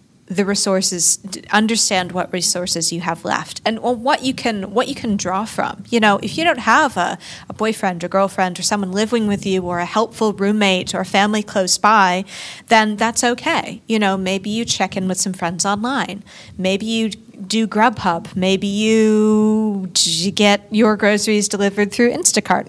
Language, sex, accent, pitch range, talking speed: English, female, American, 180-215 Hz, 175 wpm